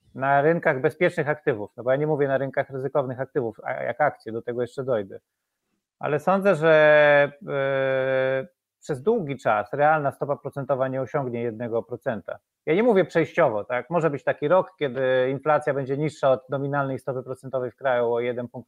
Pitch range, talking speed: 130-155 Hz, 175 wpm